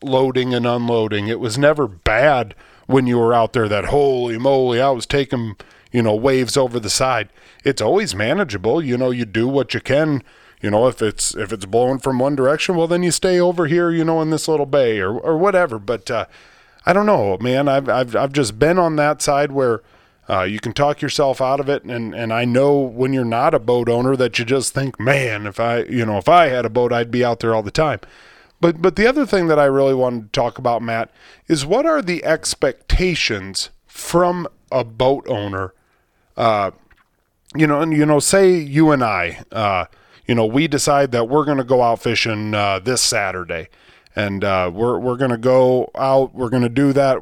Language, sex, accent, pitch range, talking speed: English, male, American, 115-145 Hz, 220 wpm